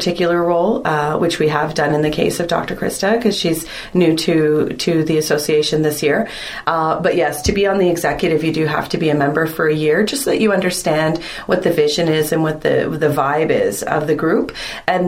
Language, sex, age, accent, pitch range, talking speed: English, female, 30-49, American, 145-170 Hz, 235 wpm